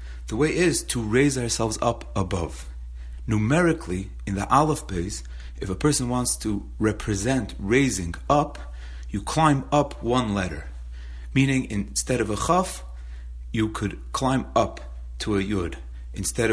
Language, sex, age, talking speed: English, male, 40-59, 140 wpm